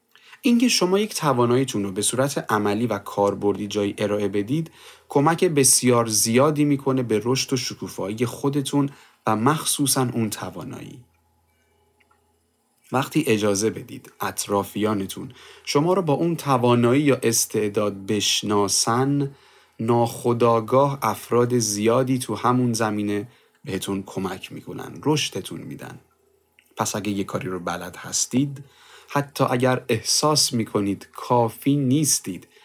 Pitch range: 105-140 Hz